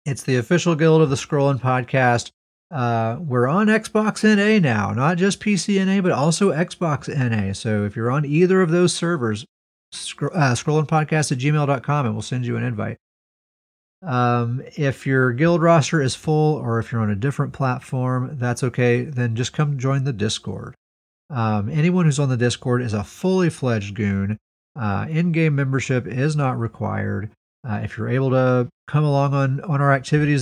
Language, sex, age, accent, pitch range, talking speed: English, male, 40-59, American, 115-150 Hz, 170 wpm